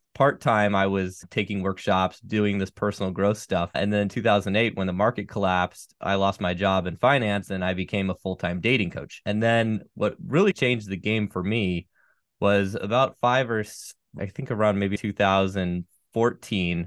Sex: male